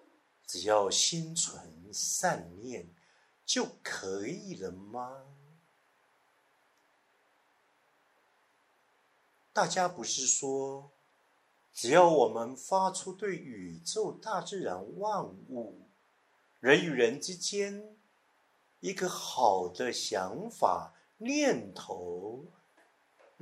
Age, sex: 50-69, male